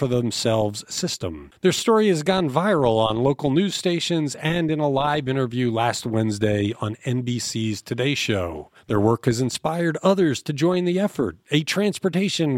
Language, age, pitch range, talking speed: English, 40-59, 120-175 Hz, 160 wpm